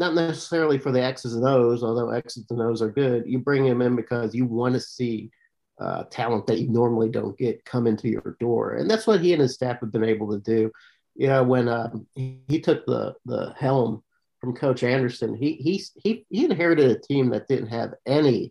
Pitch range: 120-145 Hz